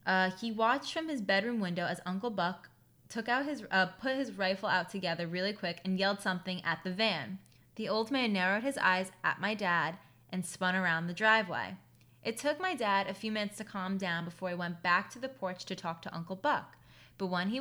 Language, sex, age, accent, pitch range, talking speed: English, female, 20-39, American, 180-225 Hz, 225 wpm